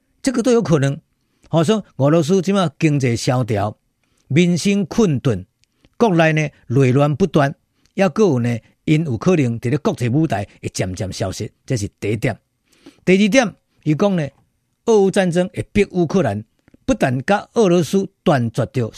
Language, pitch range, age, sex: Chinese, 135-195 Hz, 50-69, male